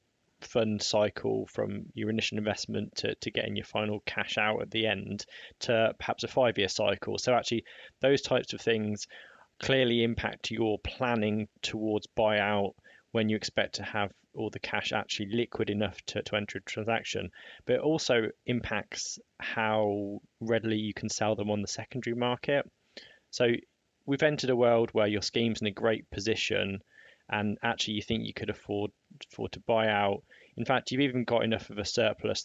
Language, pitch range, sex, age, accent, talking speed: English, 105-120 Hz, male, 20-39, British, 180 wpm